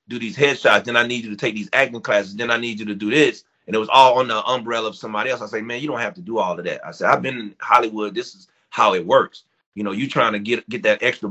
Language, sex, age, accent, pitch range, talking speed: English, male, 30-49, American, 100-125 Hz, 320 wpm